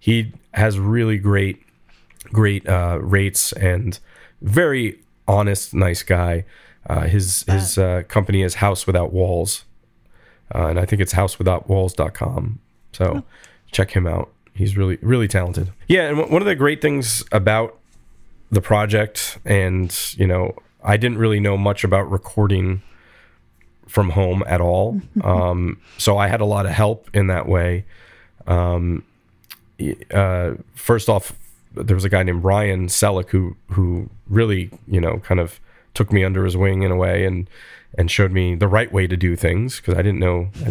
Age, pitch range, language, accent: 30-49, 90-105 Hz, English, American